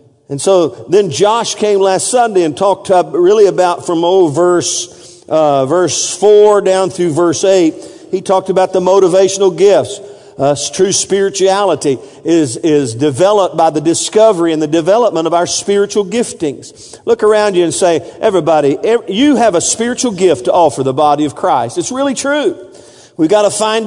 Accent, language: American, English